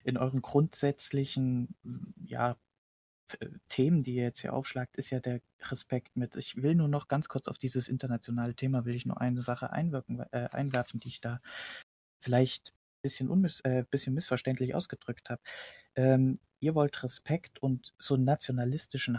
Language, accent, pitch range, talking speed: German, German, 120-145 Hz, 145 wpm